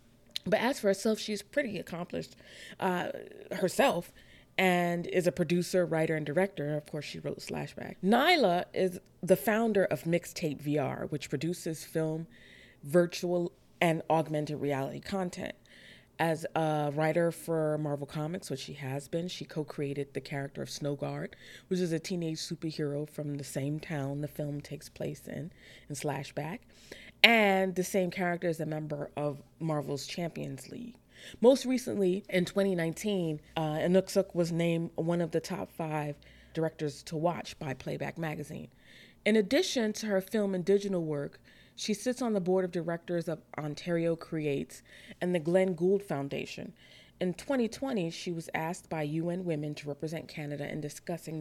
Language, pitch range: English, 150-185 Hz